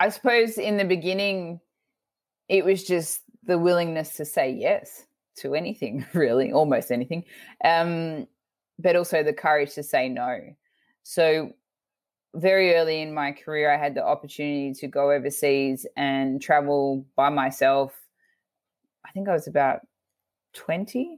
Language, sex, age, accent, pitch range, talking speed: English, female, 20-39, Australian, 140-180 Hz, 140 wpm